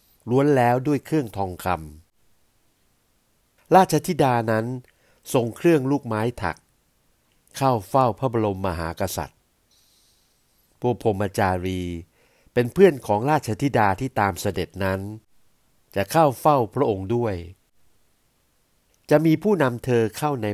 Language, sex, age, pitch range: Thai, male, 60-79, 95-130 Hz